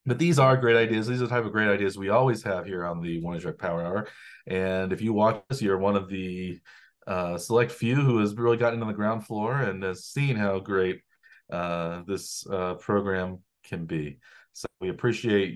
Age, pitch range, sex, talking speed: 30-49, 85-105 Hz, male, 215 wpm